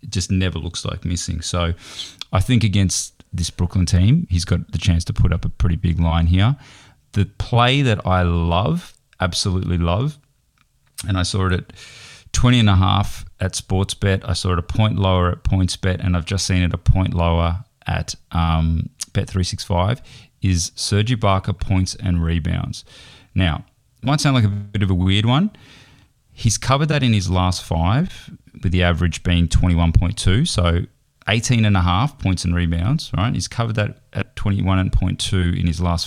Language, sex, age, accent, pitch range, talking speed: English, male, 30-49, Australian, 90-120 Hz, 170 wpm